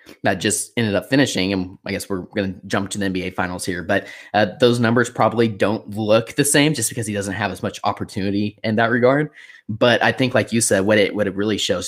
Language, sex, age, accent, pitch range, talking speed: English, male, 20-39, American, 95-110 Hz, 240 wpm